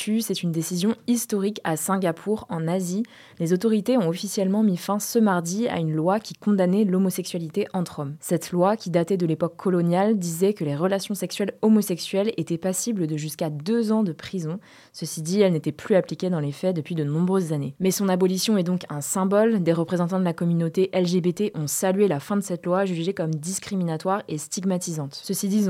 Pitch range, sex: 165-200 Hz, female